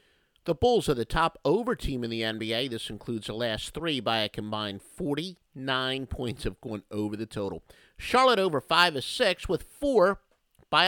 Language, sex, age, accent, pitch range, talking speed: English, male, 50-69, American, 110-175 Hz, 180 wpm